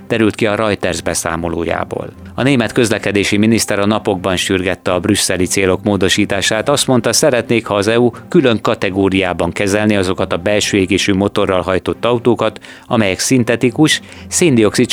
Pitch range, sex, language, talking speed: 95-115 Hz, male, Hungarian, 140 wpm